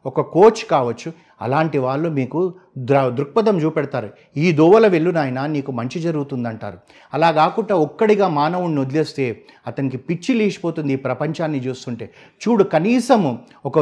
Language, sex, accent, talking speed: Telugu, male, native, 120 wpm